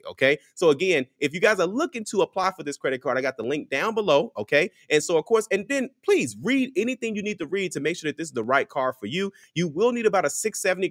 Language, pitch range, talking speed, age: English, 115-165 Hz, 280 wpm, 30-49